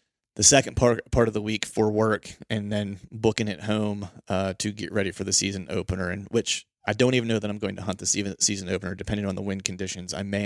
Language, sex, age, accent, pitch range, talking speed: English, male, 30-49, American, 95-110 Hz, 260 wpm